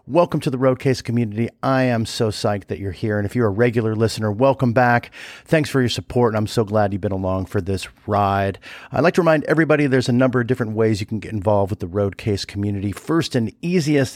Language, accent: English, American